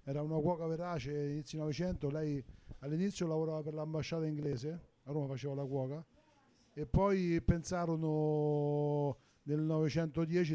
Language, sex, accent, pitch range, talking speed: Italian, male, native, 140-155 Hz, 130 wpm